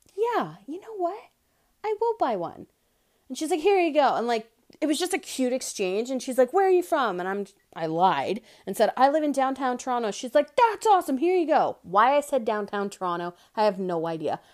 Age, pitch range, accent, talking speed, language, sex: 30-49, 175-265 Hz, American, 230 wpm, English, female